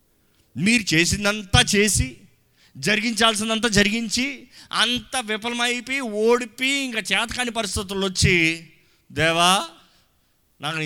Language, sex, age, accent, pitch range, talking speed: Telugu, male, 30-49, native, 155-225 Hz, 75 wpm